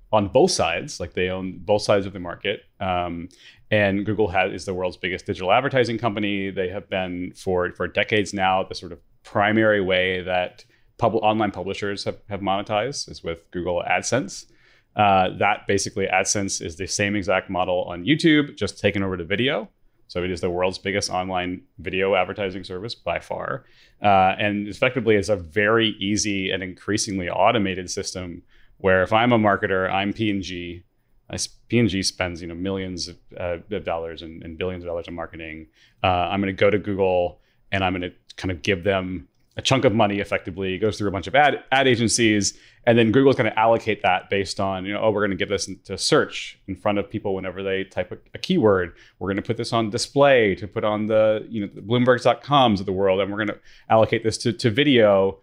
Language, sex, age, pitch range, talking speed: English, male, 30-49, 95-110 Hz, 210 wpm